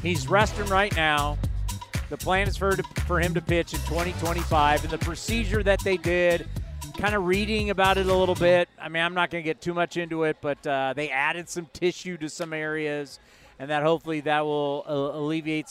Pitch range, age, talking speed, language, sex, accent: 145-190 Hz, 40-59, 210 wpm, English, male, American